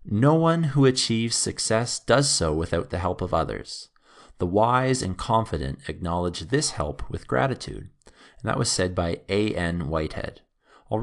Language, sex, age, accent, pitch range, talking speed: English, male, 30-49, American, 85-125 Hz, 165 wpm